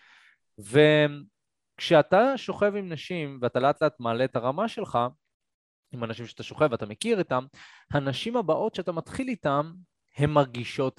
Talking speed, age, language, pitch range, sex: 135 wpm, 20-39, Hebrew, 115-175 Hz, male